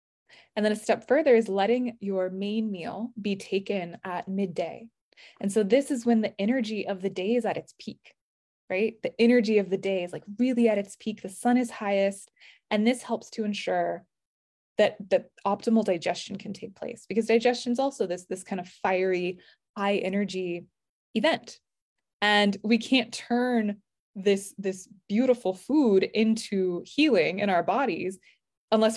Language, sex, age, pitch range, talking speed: English, female, 20-39, 190-230 Hz, 170 wpm